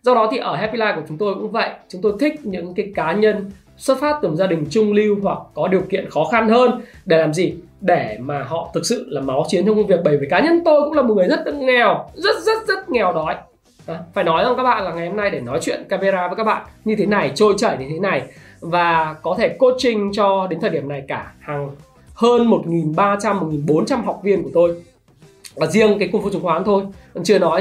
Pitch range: 160-215 Hz